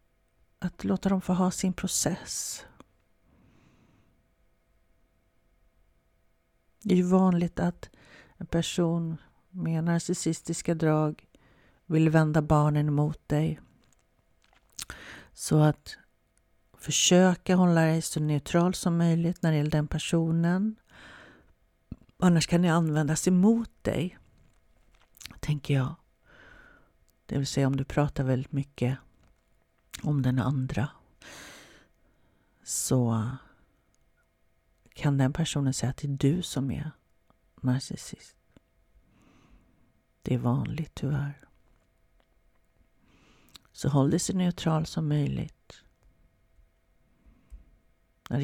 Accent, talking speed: native, 95 wpm